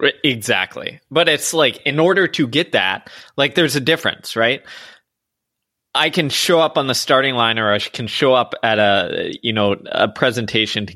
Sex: male